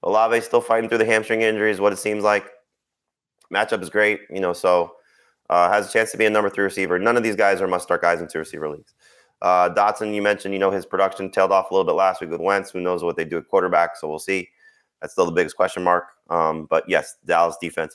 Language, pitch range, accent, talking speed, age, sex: English, 80-105 Hz, American, 250 wpm, 30-49, male